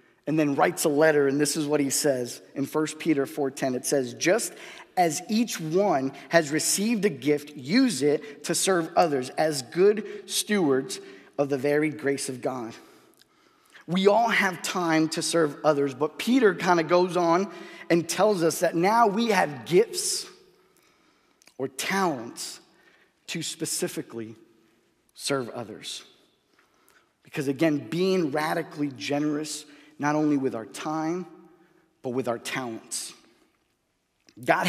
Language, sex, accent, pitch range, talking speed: English, male, American, 150-195 Hz, 140 wpm